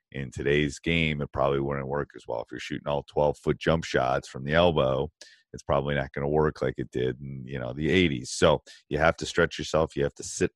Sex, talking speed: male, 250 wpm